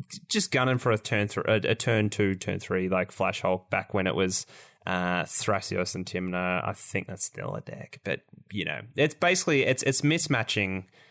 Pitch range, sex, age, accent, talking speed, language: 100-140 Hz, male, 10-29, Australian, 195 wpm, English